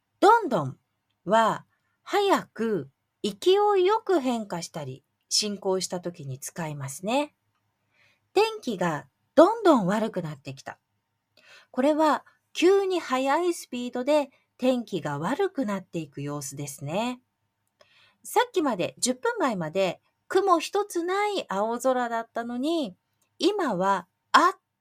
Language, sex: Japanese, female